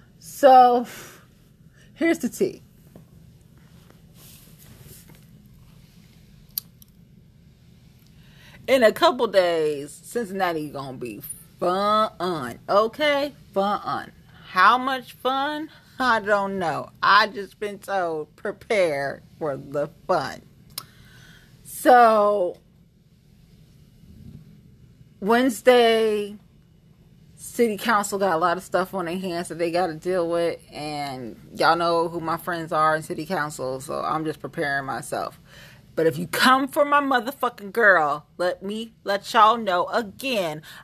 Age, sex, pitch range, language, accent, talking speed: 30-49, female, 160-220 Hz, English, American, 110 wpm